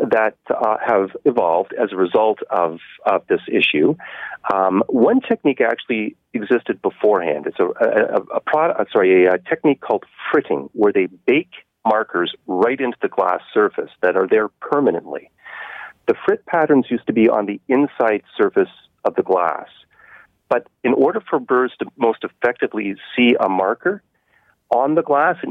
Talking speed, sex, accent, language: 160 wpm, male, American, English